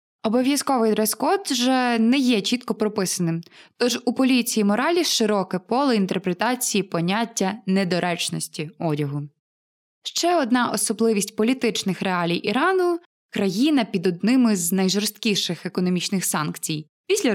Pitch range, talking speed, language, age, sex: 185-245 Hz, 105 wpm, Ukrainian, 20-39, female